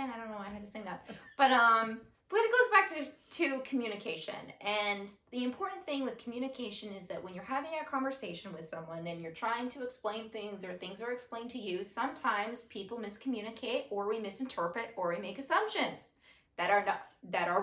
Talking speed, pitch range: 205 wpm, 215-275 Hz